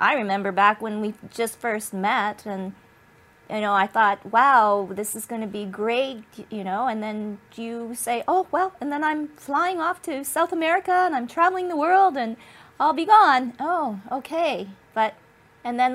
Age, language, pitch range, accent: 40-59, English, 190-245 Hz, American